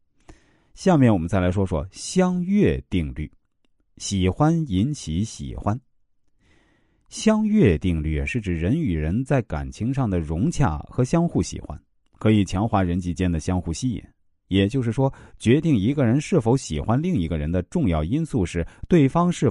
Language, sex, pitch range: Chinese, male, 85-125 Hz